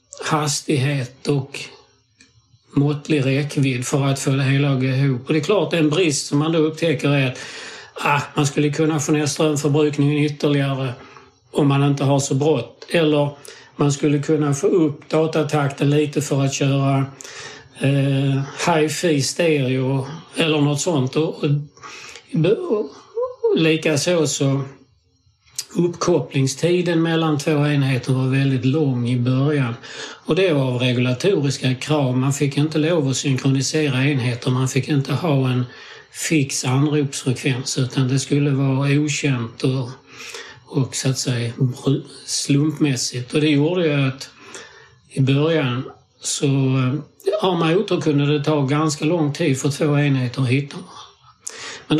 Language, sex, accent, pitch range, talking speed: Swedish, male, native, 135-155 Hz, 145 wpm